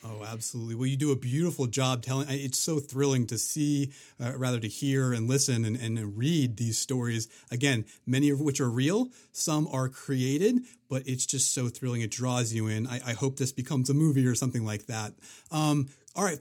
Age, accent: 30-49, American